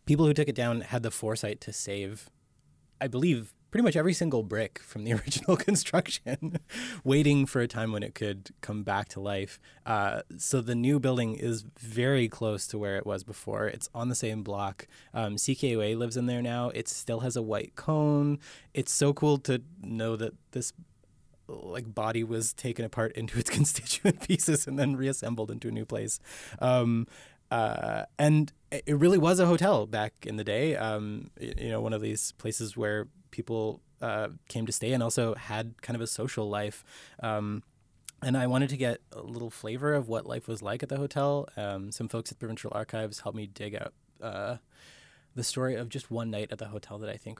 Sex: male